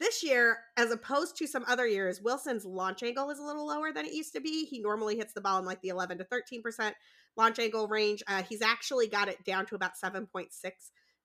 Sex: female